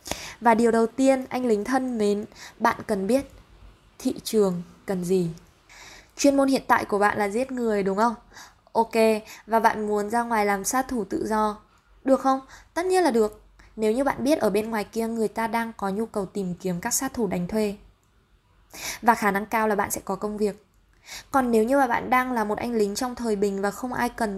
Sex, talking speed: female, 225 wpm